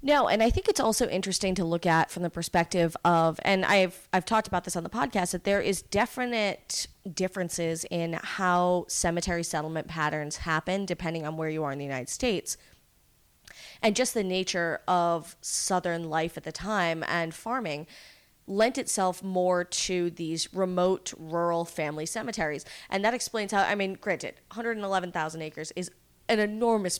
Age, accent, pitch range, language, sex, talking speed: 20-39, American, 165-195 Hz, English, female, 170 wpm